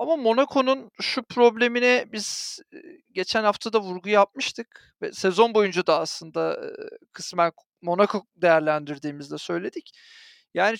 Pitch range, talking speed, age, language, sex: 195-260 Hz, 110 wpm, 40-59, Turkish, male